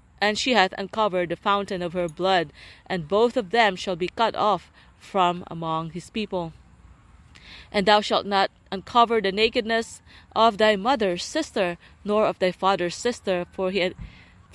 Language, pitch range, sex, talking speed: English, 180-215 Hz, female, 160 wpm